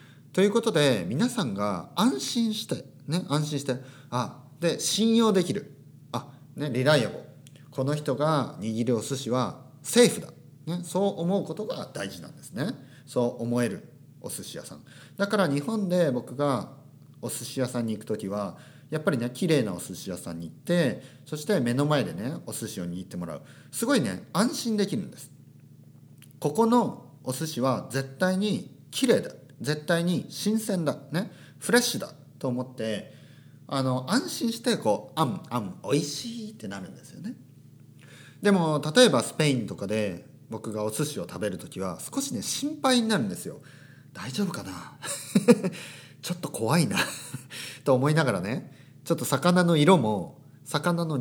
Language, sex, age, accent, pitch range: Japanese, male, 40-59, native, 130-175 Hz